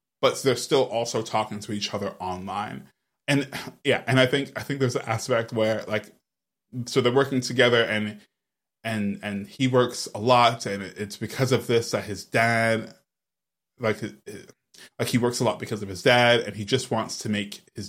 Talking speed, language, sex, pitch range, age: 190 wpm, English, male, 105-125 Hz, 20-39